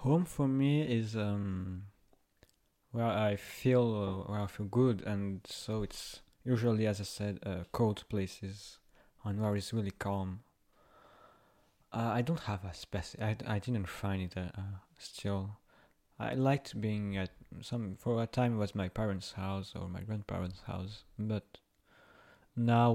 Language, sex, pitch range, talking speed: English, male, 100-115 Hz, 155 wpm